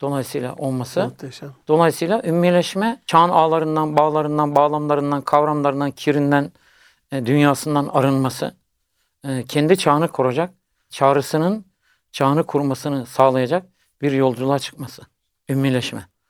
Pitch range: 135-165 Hz